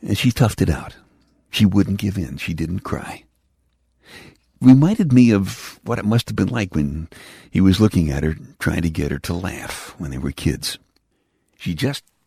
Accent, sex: American, male